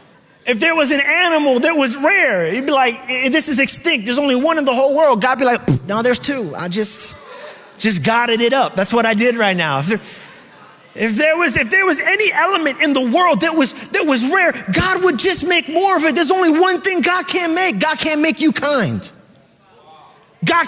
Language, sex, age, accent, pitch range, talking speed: English, male, 30-49, American, 240-340 Hz, 225 wpm